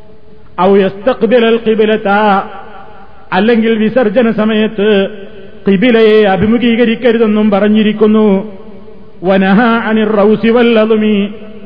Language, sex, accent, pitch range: Malayalam, male, native, 205-225 Hz